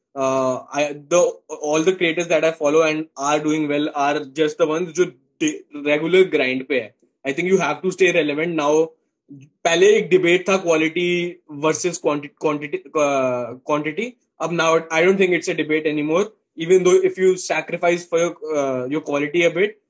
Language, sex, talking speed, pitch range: Hindi, male, 140 wpm, 160-200 Hz